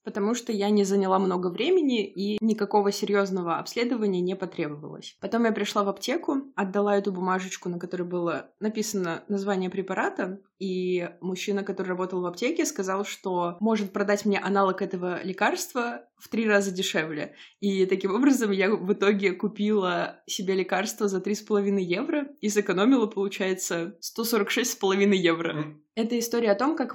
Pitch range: 185-210 Hz